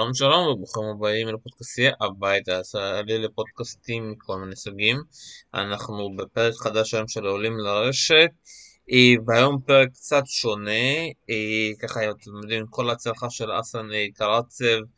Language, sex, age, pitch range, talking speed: Hebrew, male, 20-39, 105-130 Hz, 110 wpm